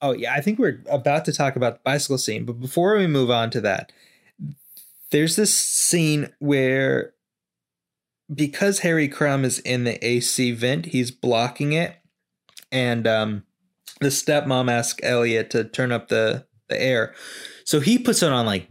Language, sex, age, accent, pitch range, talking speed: English, male, 20-39, American, 125-165 Hz, 165 wpm